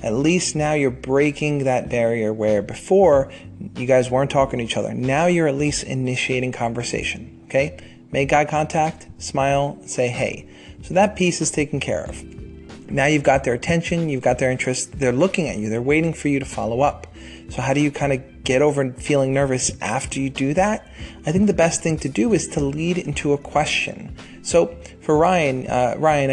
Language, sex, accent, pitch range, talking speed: English, male, American, 125-165 Hz, 200 wpm